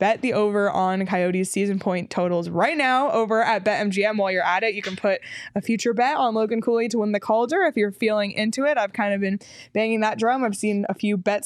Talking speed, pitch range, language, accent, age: 245 wpm, 185-235 Hz, English, American, 20-39